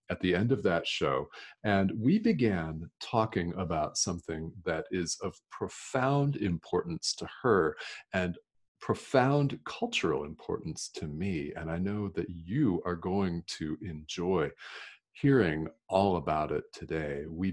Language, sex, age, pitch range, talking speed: English, male, 40-59, 80-110 Hz, 135 wpm